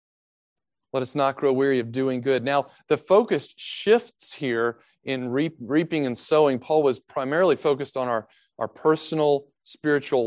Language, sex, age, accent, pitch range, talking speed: English, male, 40-59, American, 120-150 Hz, 150 wpm